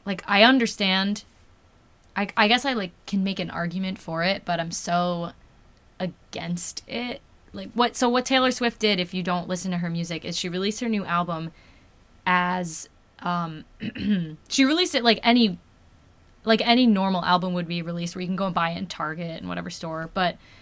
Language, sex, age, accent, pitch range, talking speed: English, female, 20-39, American, 170-205 Hz, 190 wpm